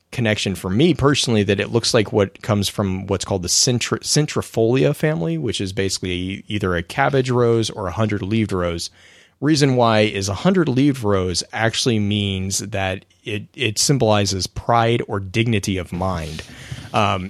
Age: 30-49